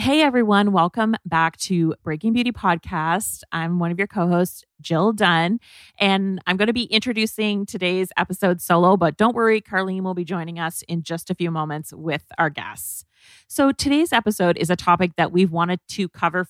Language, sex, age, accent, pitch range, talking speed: English, female, 30-49, American, 170-215 Hz, 185 wpm